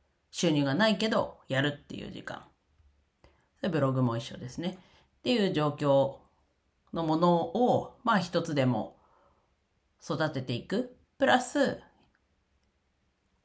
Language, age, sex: Japanese, 40-59, female